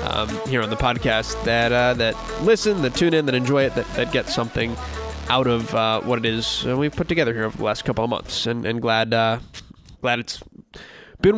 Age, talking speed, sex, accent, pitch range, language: 20-39, 220 wpm, male, American, 120-160 Hz, English